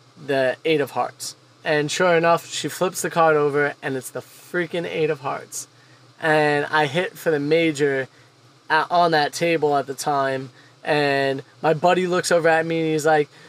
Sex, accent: male, American